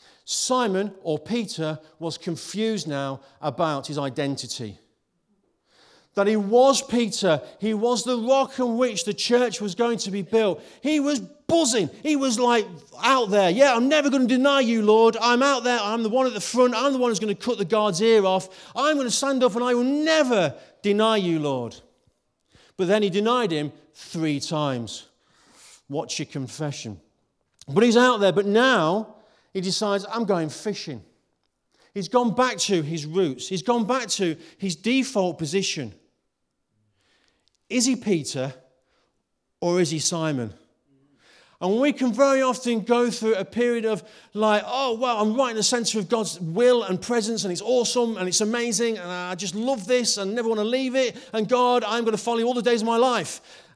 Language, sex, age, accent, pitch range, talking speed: English, male, 40-59, British, 175-245 Hz, 190 wpm